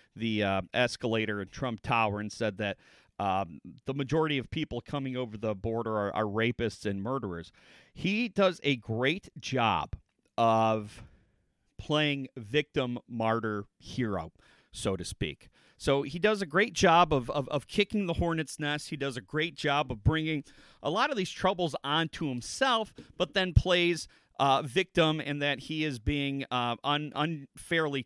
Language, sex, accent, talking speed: English, male, American, 165 wpm